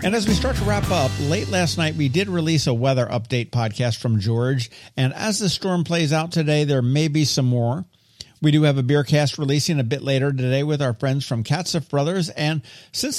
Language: English